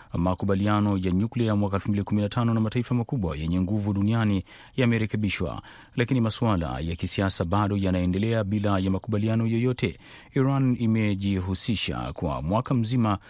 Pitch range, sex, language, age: 95-115 Hz, male, Swahili, 30-49